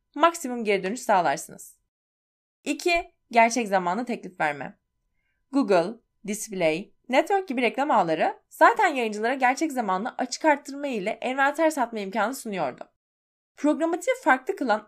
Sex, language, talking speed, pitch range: female, Turkish, 115 wpm, 205-315 Hz